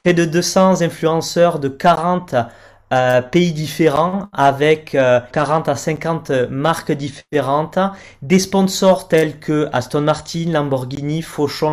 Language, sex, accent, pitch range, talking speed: French, male, French, 135-170 Hz, 125 wpm